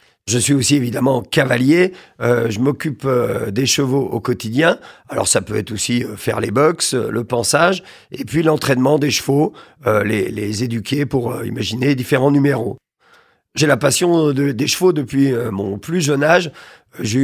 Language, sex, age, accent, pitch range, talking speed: French, male, 40-59, French, 125-155 Hz, 180 wpm